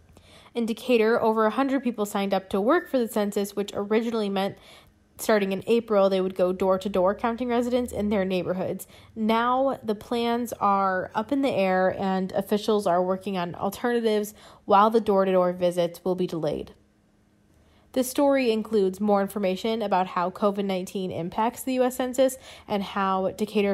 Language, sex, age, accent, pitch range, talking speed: English, female, 20-39, American, 190-225 Hz, 160 wpm